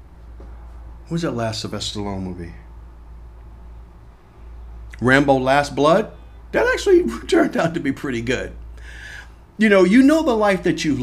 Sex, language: male, English